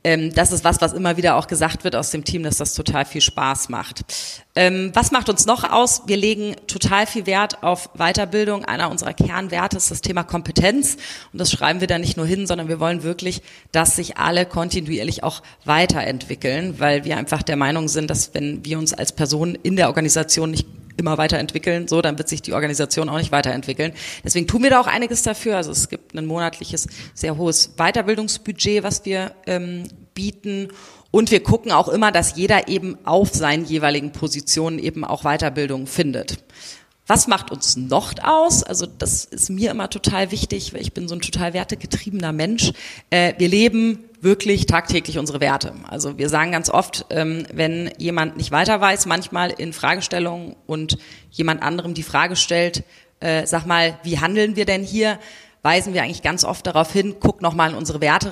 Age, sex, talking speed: 30-49, female, 185 wpm